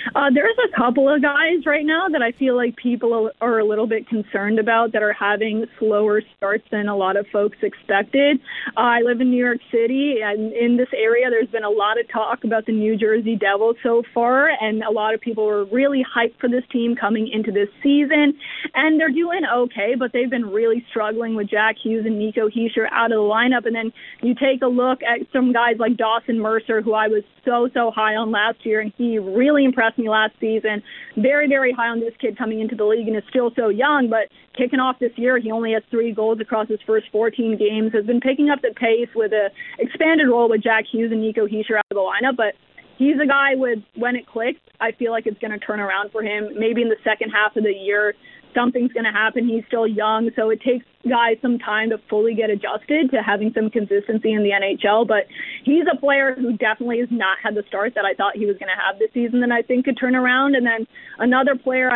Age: 20-39